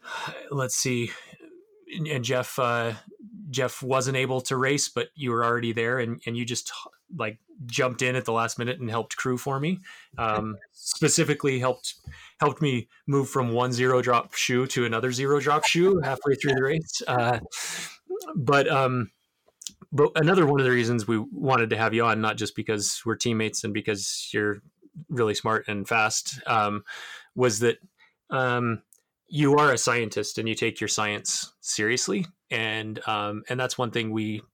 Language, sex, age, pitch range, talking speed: English, male, 20-39, 115-140 Hz, 170 wpm